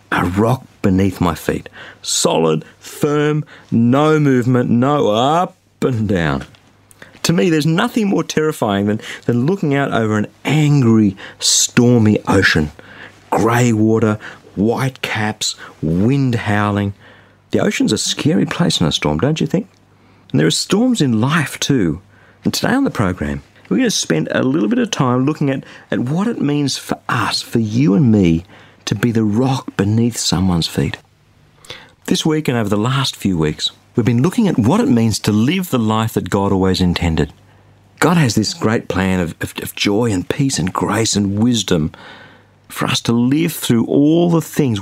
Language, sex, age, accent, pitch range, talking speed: English, male, 50-69, Australian, 100-135 Hz, 175 wpm